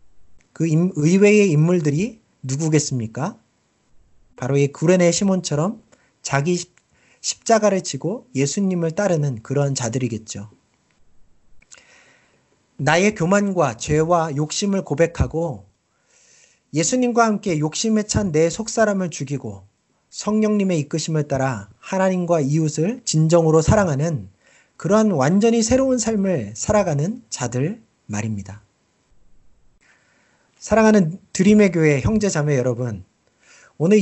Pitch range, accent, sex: 135-195 Hz, native, male